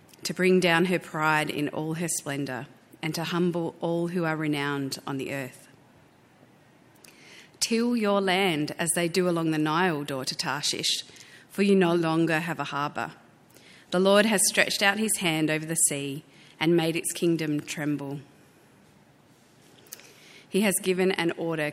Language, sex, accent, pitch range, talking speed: English, female, Australian, 150-180 Hz, 160 wpm